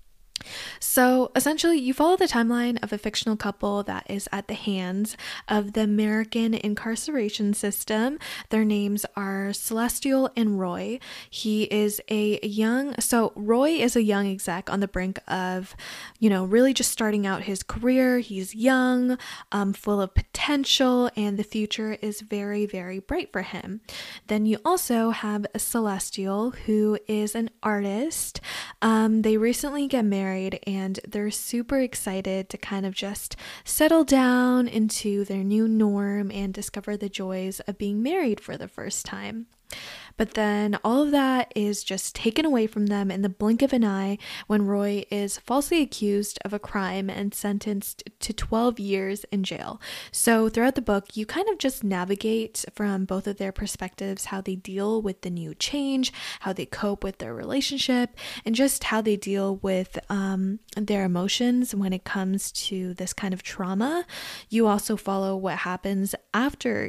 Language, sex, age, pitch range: English, female, 10-29, 195-235 Hz